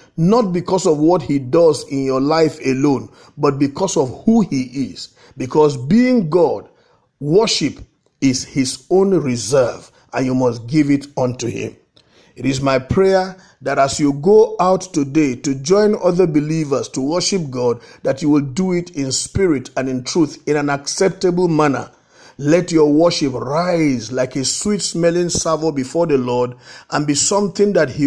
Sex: male